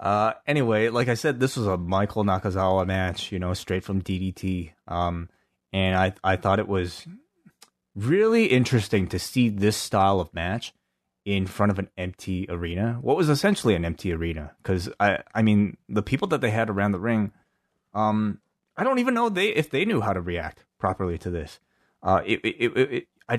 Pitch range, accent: 95-115 Hz, American